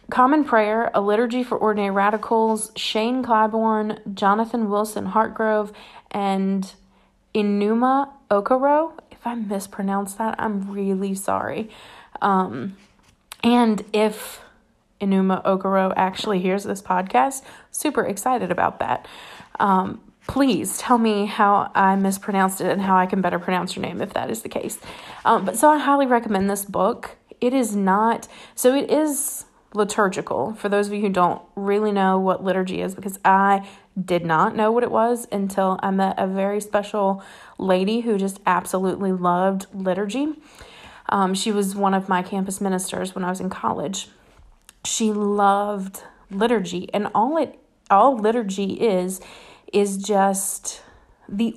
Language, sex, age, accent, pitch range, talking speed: English, female, 30-49, American, 195-225 Hz, 150 wpm